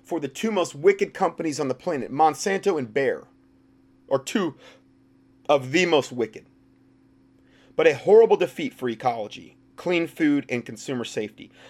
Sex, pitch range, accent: male, 120-175 Hz, American